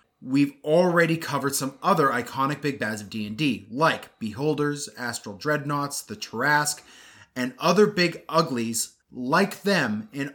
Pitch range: 125-160 Hz